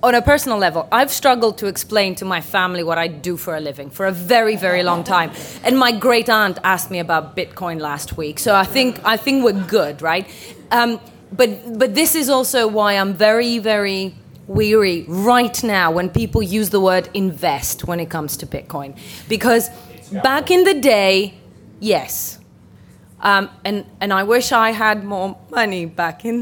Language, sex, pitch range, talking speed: English, female, 185-240 Hz, 185 wpm